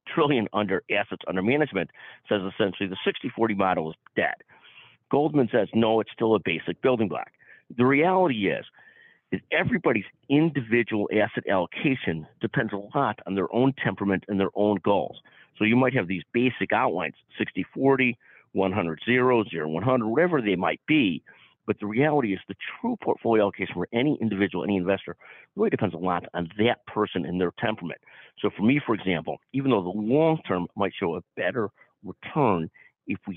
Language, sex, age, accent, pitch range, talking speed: English, male, 50-69, American, 95-125 Hz, 165 wpm